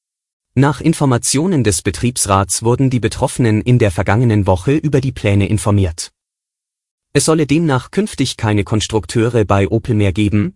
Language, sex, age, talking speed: German, male, 30-49, 140 wpm